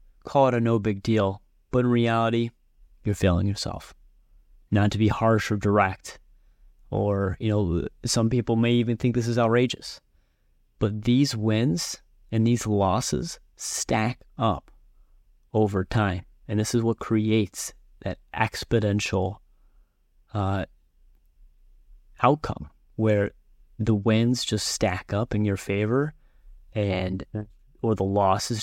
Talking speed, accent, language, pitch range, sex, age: 130 wpm, American, English, 95-120 Hz, male, 30-49